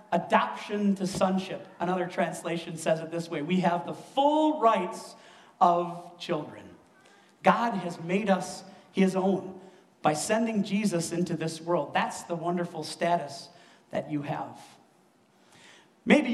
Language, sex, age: English, male, 40-59